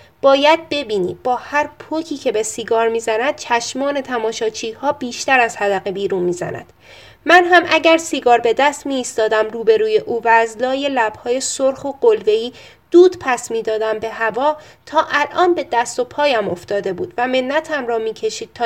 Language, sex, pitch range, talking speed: Persian, female, 225-315 Hz, 160 wpm